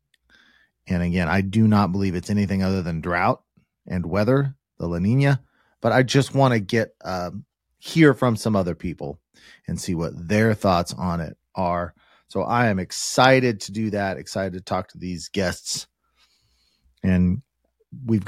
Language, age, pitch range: English, 30-49, 95-130 Hz